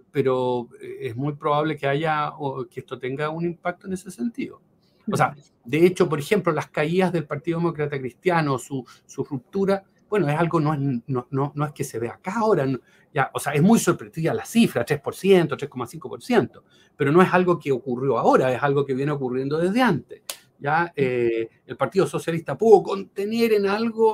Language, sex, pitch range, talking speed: Spanish, male, 140-180 Hz, 185 wpm